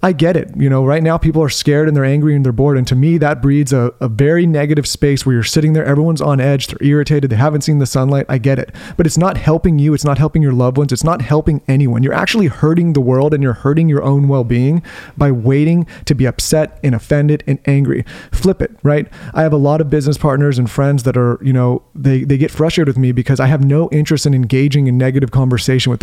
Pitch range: 140-165 Hz